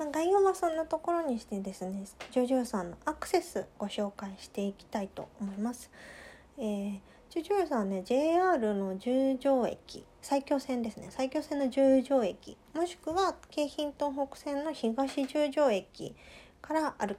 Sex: female